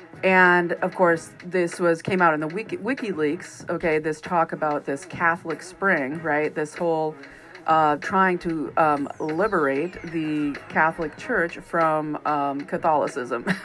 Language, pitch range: English, 155-190 Hz